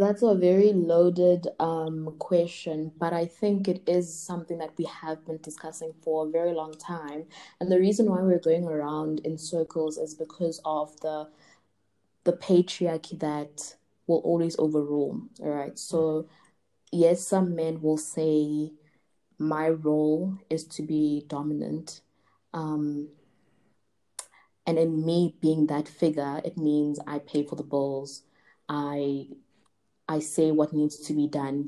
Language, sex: English, female